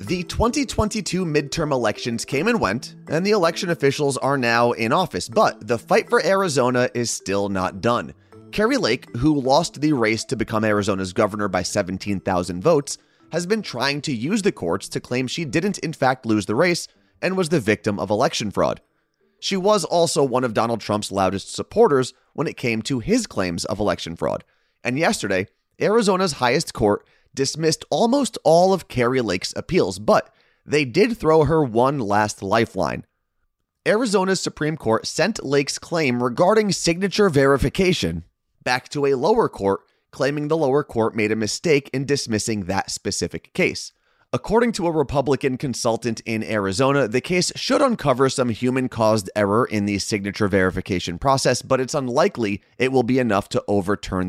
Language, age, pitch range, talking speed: English, 30-49, 105-160 Hz, 170 wpm